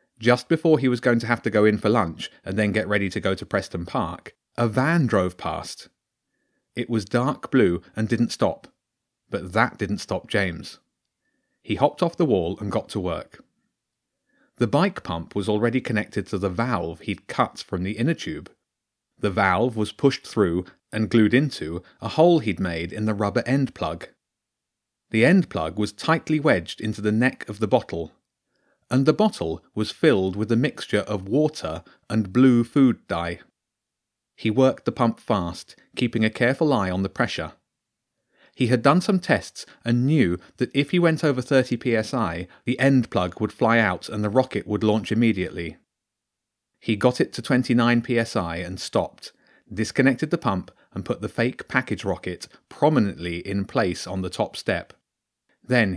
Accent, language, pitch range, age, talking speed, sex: British, English, 100-125 Hz, 30-49, 180 wpm, male